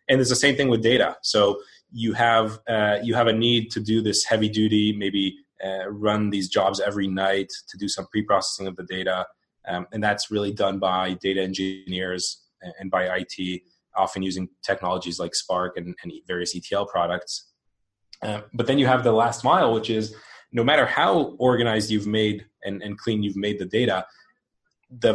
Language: English